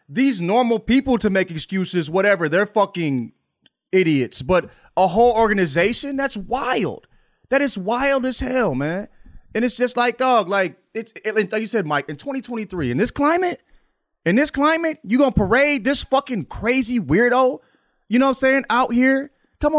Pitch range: 180-255 Hz